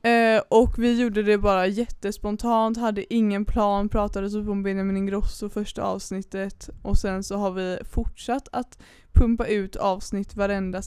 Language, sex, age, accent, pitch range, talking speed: Swedish, female, 20-39, native, 195-225 Hz, 155 wpm